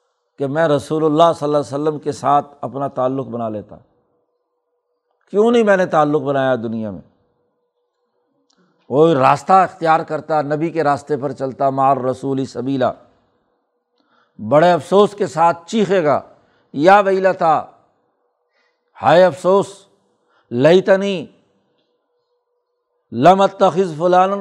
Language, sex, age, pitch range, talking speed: Urdu, male, 60-79, 145-195 Hz, 120 wpm